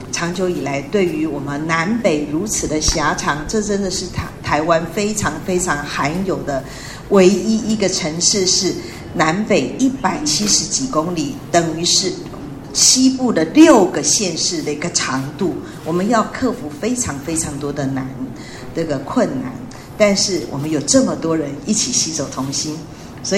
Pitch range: 150-215 Hz